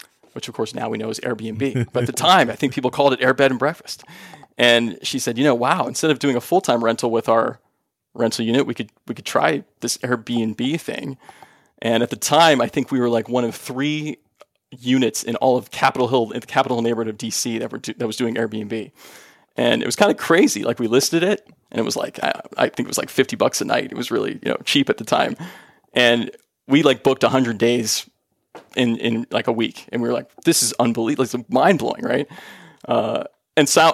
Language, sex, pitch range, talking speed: English, male, 115-135 Hz, 235 wpm